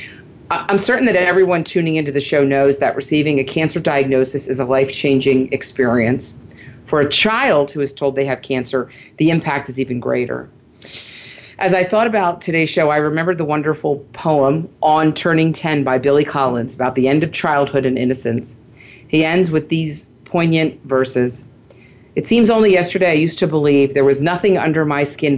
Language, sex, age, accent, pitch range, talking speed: English, female, 40-59, American, 130-160 Hz, 180 wpm